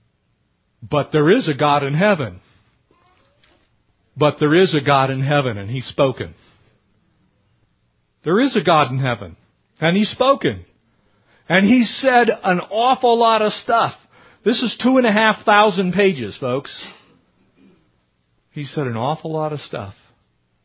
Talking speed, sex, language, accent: 145 wpm, male, English, American